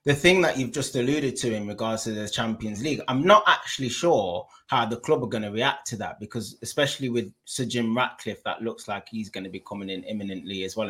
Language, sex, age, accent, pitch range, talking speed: English, male, 20-39, British, 105-130 Hz, 240 wpm